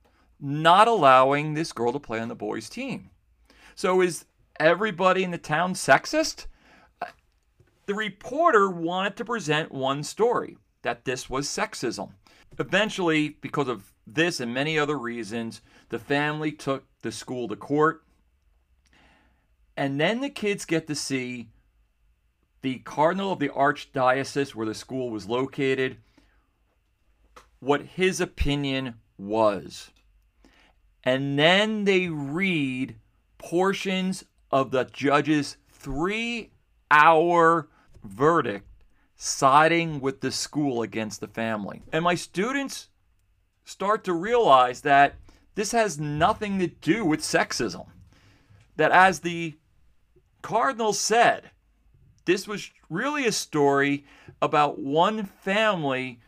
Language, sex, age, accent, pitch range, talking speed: English, male, 40-59, American, 120-180 Hz, 115 wpm